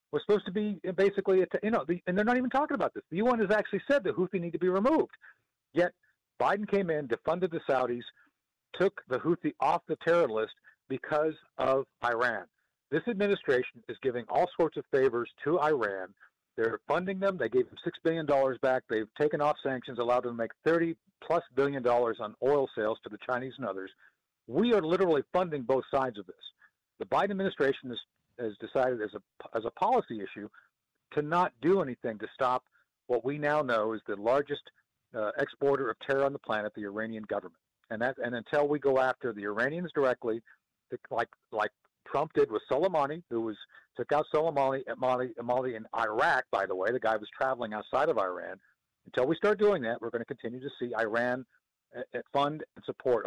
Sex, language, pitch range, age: male, English, 125-190 Hz, 50-69